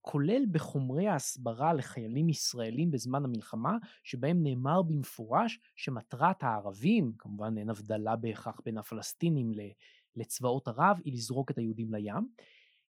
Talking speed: 115 wpm